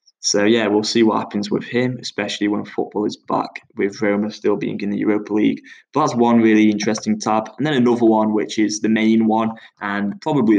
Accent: British